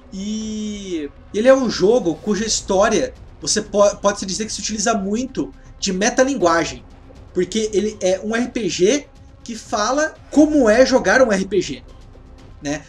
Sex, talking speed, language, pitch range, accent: male, 140 wpm, English, 200-260 Hz, Brazilian